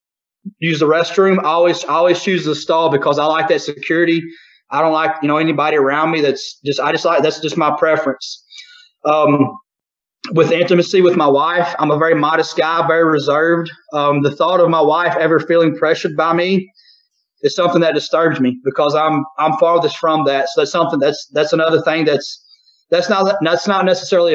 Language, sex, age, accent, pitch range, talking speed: English, male, 30-49, American, 150-175 Hz, 195 wpm